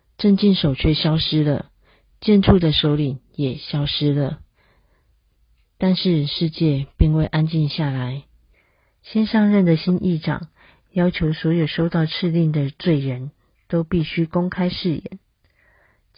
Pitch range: 145-175 Hz